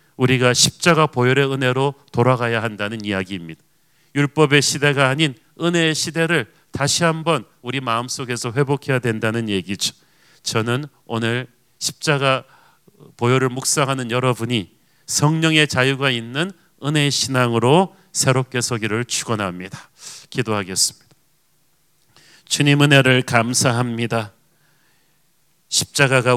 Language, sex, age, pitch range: Korean, male, 40-59, 120-155 Hz